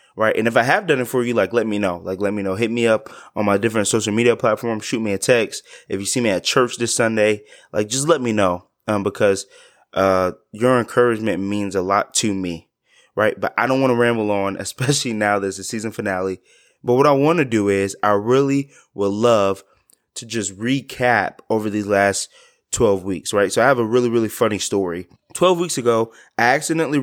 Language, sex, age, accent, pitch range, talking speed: English, male, 20-39, American, 100-130 Hz, 220 wpm